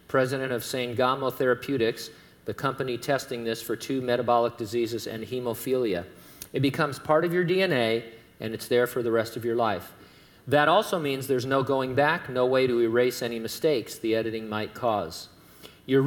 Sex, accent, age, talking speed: male, American, 50-69, 175 wpm